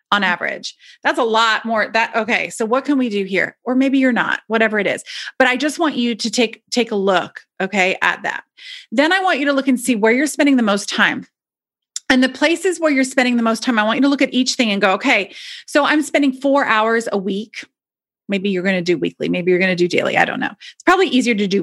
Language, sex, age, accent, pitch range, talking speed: English, female, 30-49, American, 200-260 Hz, 265 wpm